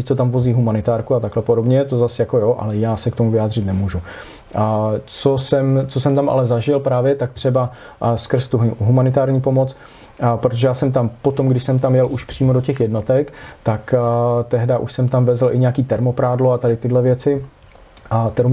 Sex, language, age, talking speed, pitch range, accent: male, Czech, 30-49, 205 wpm, 115-130 Hz, native